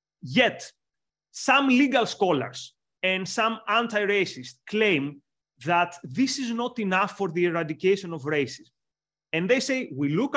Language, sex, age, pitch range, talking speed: English, male, 30-49, 155-205 Hz, 135 wpm